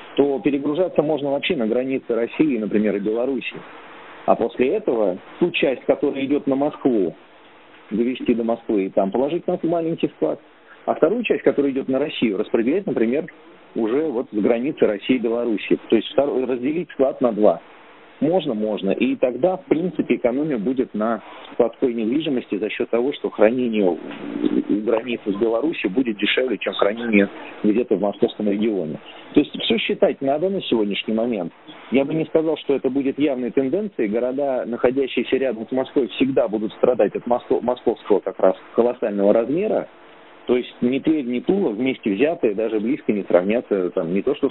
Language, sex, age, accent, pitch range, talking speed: Russian, male, 40-59, native, 110-145 Hz, 165 wpm